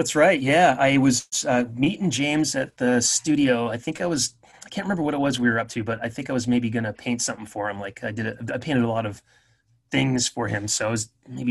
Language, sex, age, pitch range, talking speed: English, male, 30-49, 115-135 Hz, 275 wpm